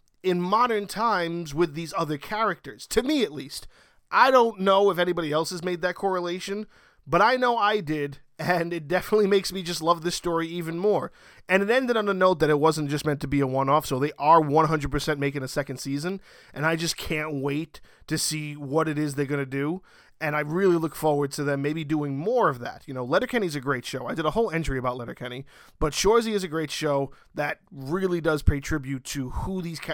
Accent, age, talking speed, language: American, 30-49, 225 wpm, English